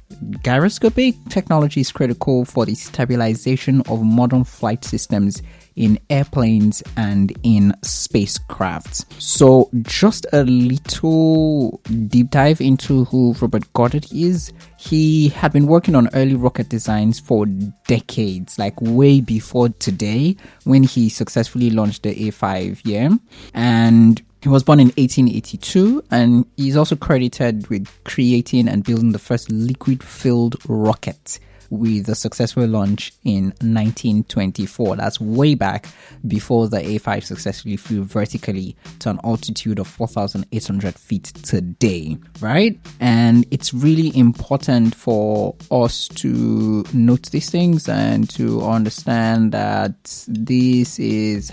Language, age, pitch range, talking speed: English, 20-39, 110-140 Hz, 125 wpm